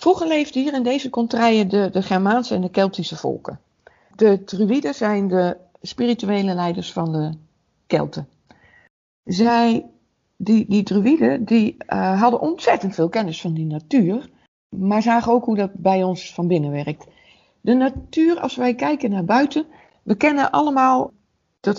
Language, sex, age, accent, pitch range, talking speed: Dutch, female, 60-79, Dutch, 180-235 Hz, 155 wpm